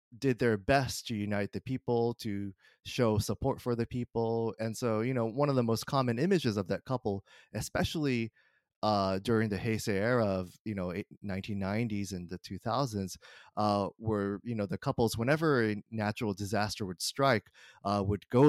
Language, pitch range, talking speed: English, 105-135 Hz, 170 wpm